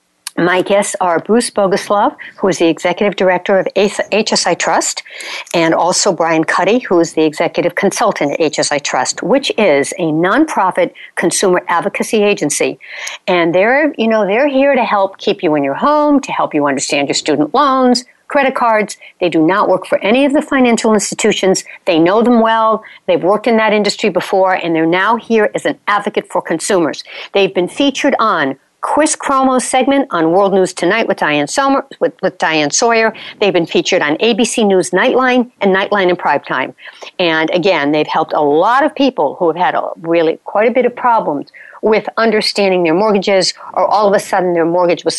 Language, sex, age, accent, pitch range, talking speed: English, female, 60-79, American, 175-230 Hz, 190 wpm